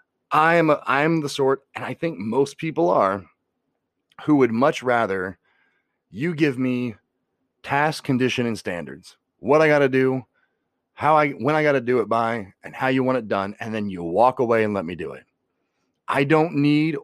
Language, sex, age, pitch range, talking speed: English, male, 30-49, 120-150 Hz, 185 wpm